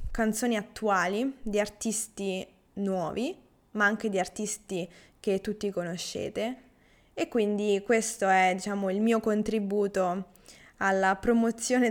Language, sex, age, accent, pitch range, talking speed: Italian, female, 20-39, native, 195-245 Hz, 110 wpm